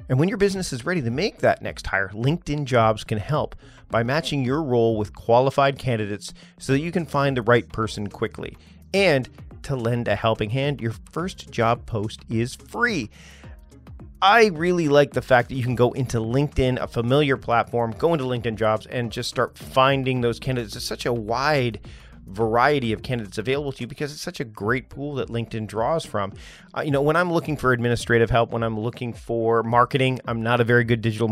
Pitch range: 115-145 Hz